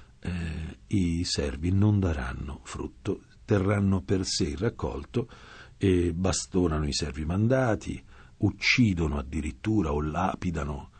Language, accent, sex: English, Italian, male